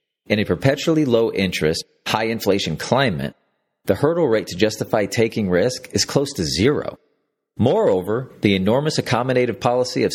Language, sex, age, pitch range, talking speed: English, male, 40-59, 95-130 Hz, 135 wpm